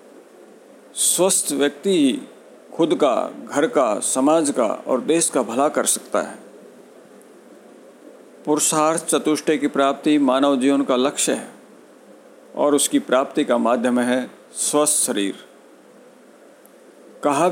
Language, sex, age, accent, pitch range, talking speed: Hindi, male, 50-69, native, 130-165 Hz, 115 wpm